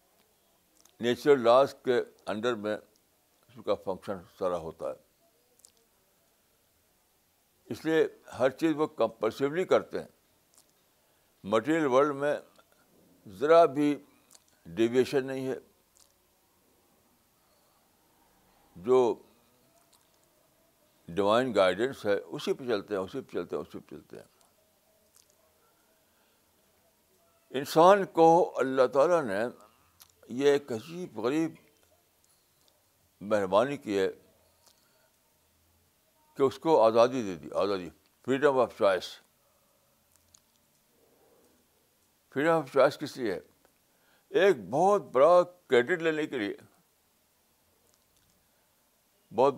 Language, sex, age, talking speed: Urdu, male, 60-79, 100 wpm